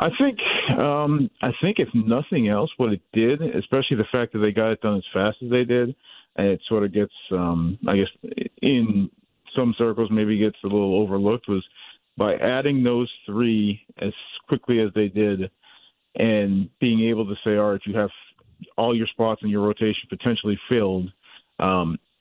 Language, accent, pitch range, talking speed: English, American, 95-115 Hz, 185 wpm